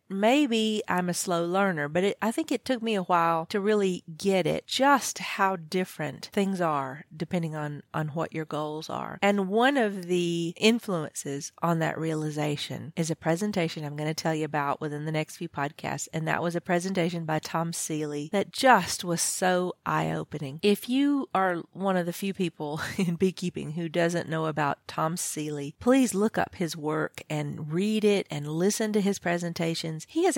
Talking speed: 190 wpm